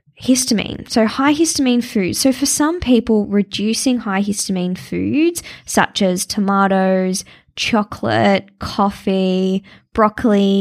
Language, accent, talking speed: English, Australian, 110 wpm